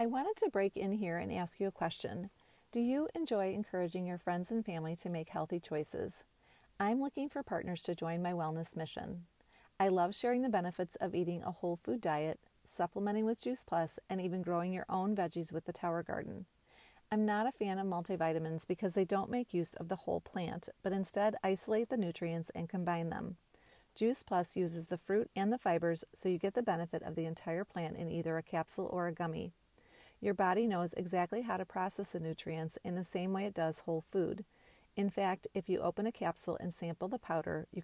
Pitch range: 170-200 Hz